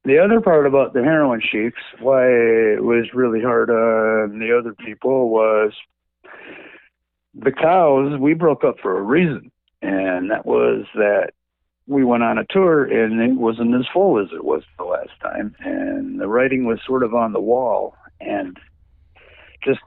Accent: American